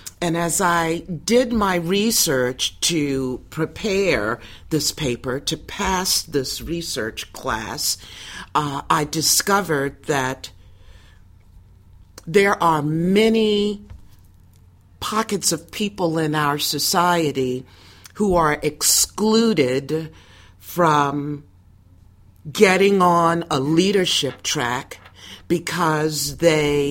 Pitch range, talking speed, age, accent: 120-170 Hz, 85 wpm, 50-69, American